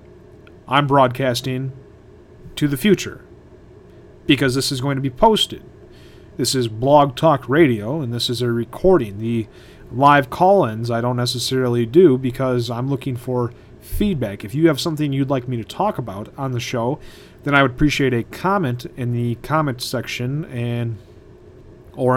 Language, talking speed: English, 160 wpm